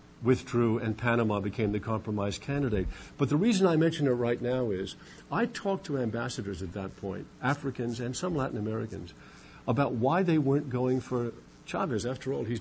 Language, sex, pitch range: English, male, 110-145 Hz